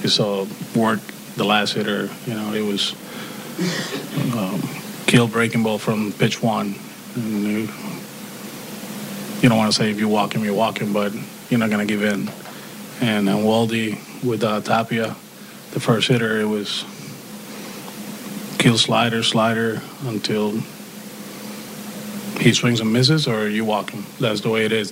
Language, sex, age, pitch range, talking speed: English, male, 30-49, 105-115 Hz, 155 wpm